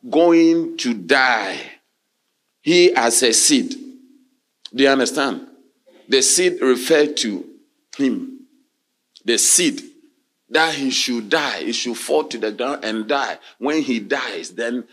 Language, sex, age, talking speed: English, male, 40-59, 135 wpm